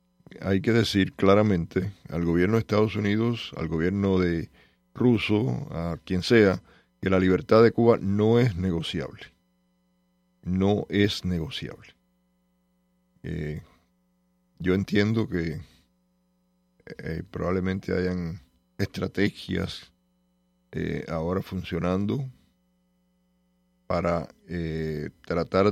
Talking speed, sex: 95 wpm, male